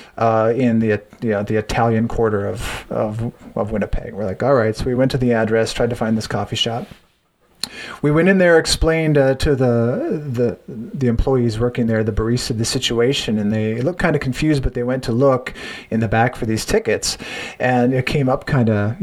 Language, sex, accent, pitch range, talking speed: English, male, American, 115-135 Hz, 215 wpm